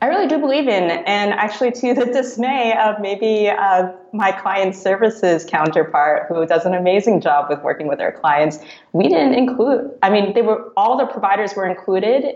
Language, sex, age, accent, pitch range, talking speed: English, female, 20-39, American, 150-195 Hz, 190 wpm